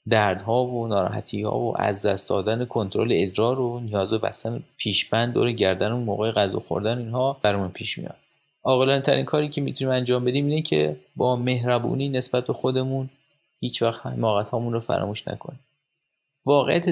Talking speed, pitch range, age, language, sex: 165 wpm, 110-140 Hz, 30-49, Persian, male